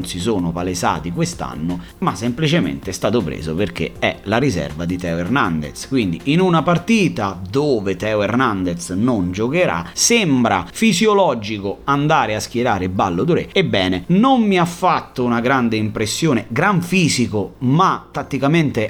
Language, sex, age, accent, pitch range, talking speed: Italian, male, 30-49, native, 100-155 Hz, 140 wpm